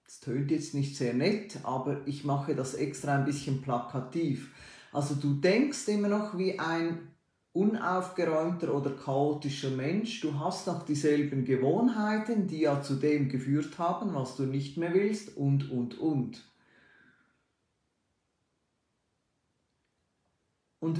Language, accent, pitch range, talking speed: German, Austrian, 135-185 Hz, 130 wpm